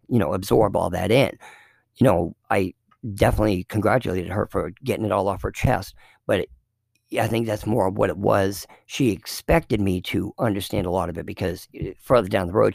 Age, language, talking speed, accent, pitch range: 50-69, English, 200 wpm, American, 100-125 Hz